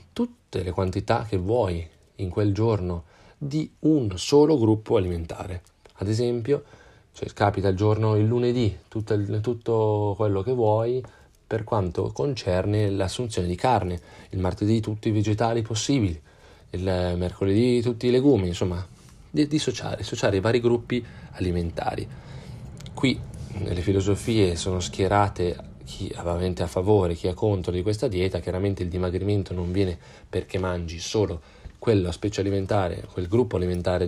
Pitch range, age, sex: 90-115 Hz, 30-49, male